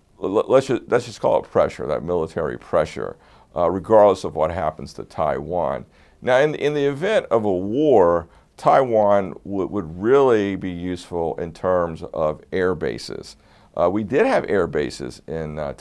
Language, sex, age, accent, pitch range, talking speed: English, male, 50-69, American, 80-105 Hz, 150 wpm